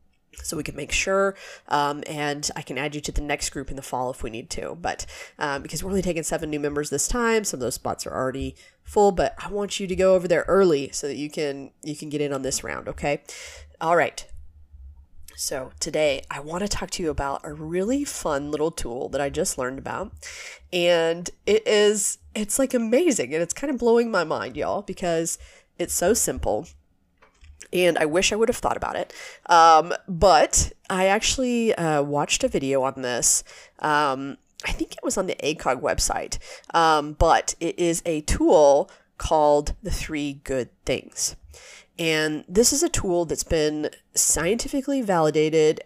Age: 30-49